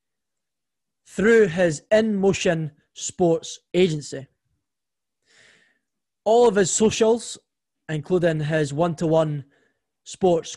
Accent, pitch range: British, 155-200 Hz